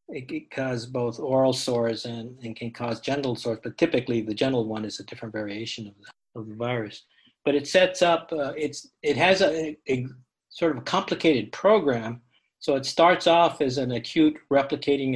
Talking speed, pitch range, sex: 195 wpm, 115-145 Hz, male